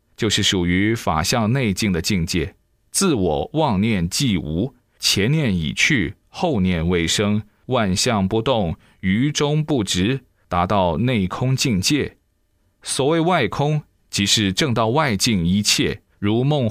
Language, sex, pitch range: Chinese, male, 95-130 Hz